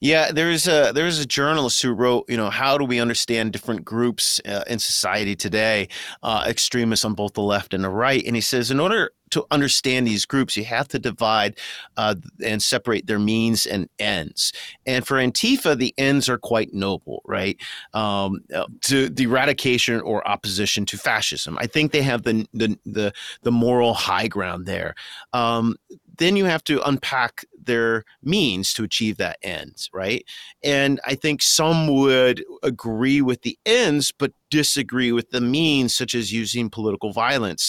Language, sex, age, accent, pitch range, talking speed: English, male, 40-59, American, 110-135 Hz, 175 wpm